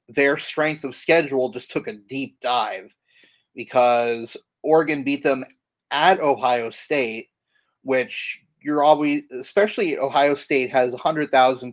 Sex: male